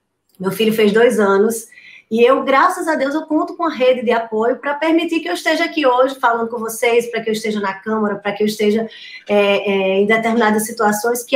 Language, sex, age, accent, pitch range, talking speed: Portuguese, female, 20-39, Brazilian, 215-280 Hz, 225 wpm